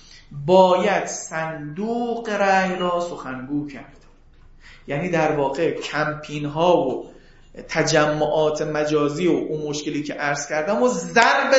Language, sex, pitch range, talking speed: Persian, male, 150-235 Hz, 115 wpm